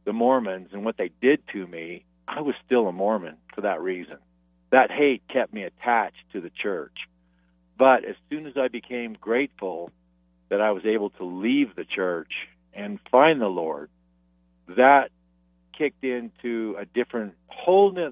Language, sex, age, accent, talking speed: English, male, 50-69, American, 160 wpm